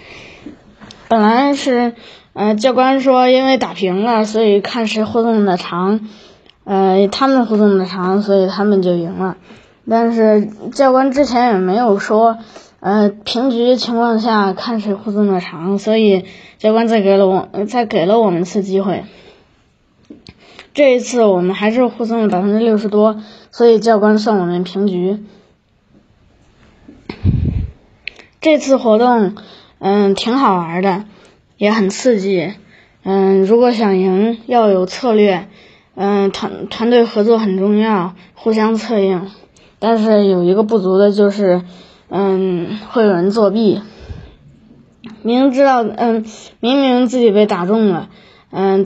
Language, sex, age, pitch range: Chinese, female, 20-39, 195-230 Hz